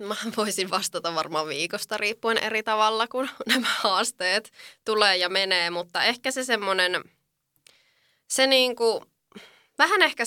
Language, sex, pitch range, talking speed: Finnish, female, 175-210 Hz, 130 wpm